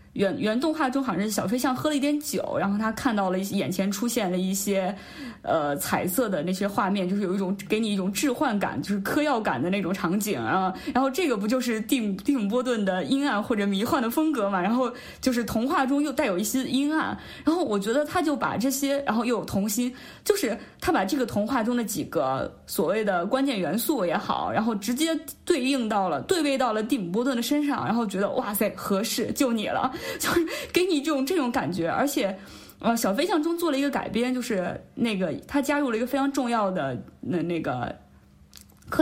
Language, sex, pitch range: Chinese, female, 200-280 Hz